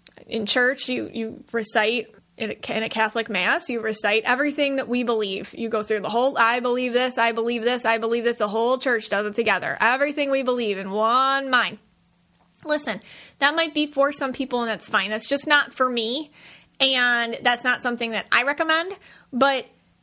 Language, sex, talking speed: English, female, 190 wpm